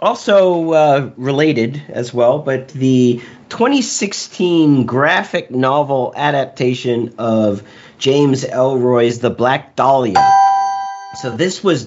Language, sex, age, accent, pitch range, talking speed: English, male, 40-59, American, 110-145 Hz, 100 wpm